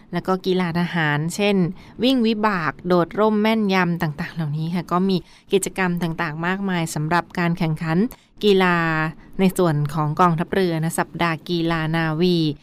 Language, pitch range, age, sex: Thai, 170-195 Hz, 20-39, female